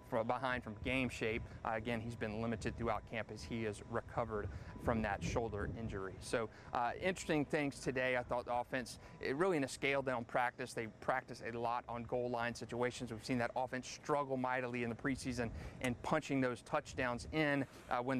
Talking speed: 195 wpm